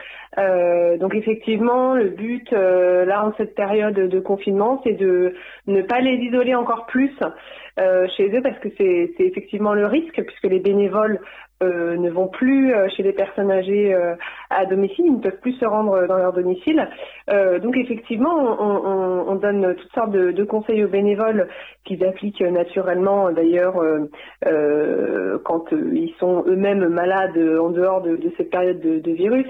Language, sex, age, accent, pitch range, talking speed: French, female, 30-49, French, 180-225 Hz, 180 wpm